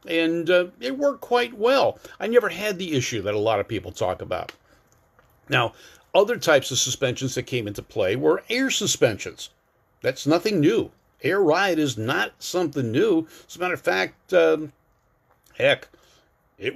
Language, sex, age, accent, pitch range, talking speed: English, male, 50-69, American, 125-185 Hz, 170 wpm